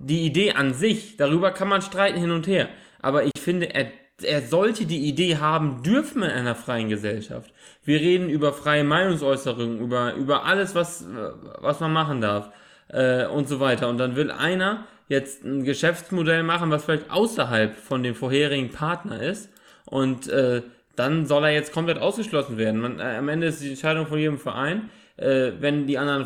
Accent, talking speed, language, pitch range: German, 185 wpm, German, 125-170 Hz